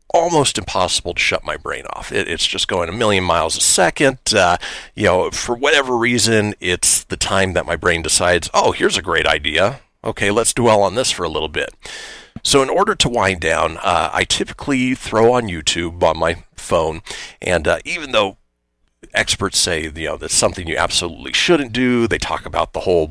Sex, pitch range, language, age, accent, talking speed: male, 85-115 Hz, English, 40-59, American, 195 wpm